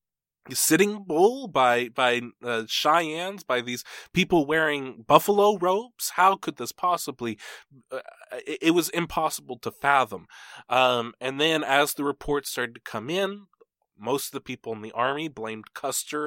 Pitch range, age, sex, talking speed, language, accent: 120-155 Hz, 20-39, male, 155 wpm, English, American